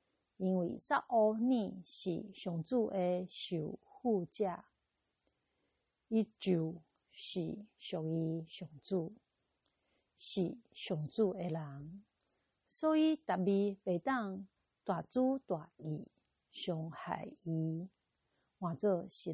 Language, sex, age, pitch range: Chinese, female, 50-69, 175-230 Hz